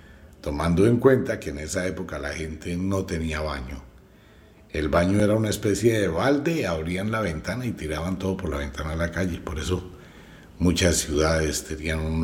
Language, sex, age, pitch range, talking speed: Spanish, male, 60-79, 75-105 Hz, 180 wpm